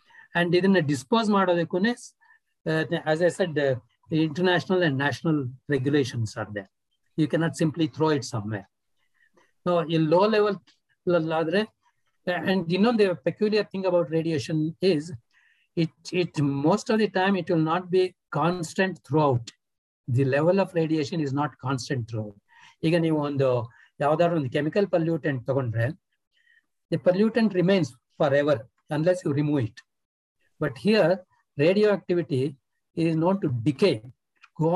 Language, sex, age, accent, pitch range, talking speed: Kannada, male, 60-79, native, 140-180 Hz, 140 wpm